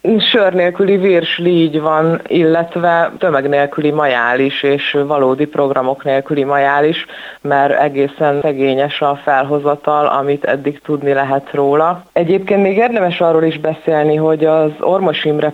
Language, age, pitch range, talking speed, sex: Hungarian, 30-49, 135-160 Hz, 125 wpm, female